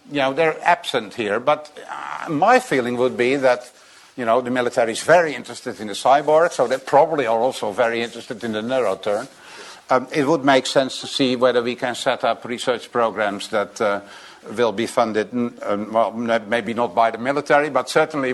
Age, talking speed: 60-79, 190 wpm